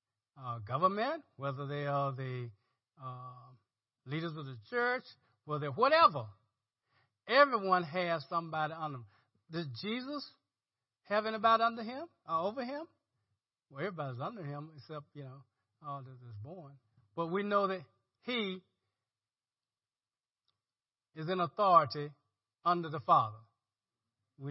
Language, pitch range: English, 115-190 Hz